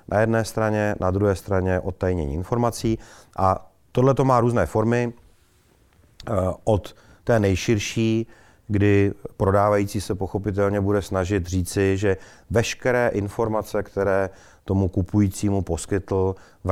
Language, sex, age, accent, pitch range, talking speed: Czech, male, 40-59, native, 90-100 Hz, 115 wpm